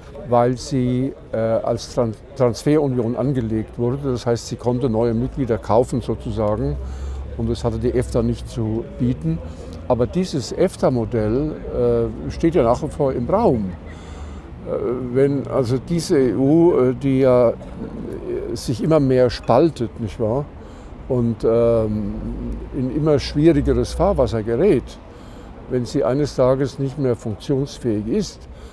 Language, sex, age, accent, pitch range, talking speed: German, male, 50-69, German, 110-135 Hz, 130 wpm